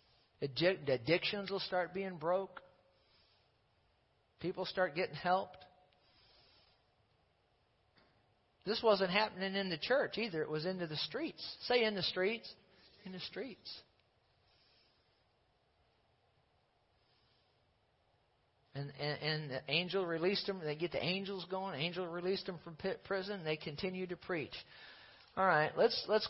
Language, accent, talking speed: English, American, 130 wpm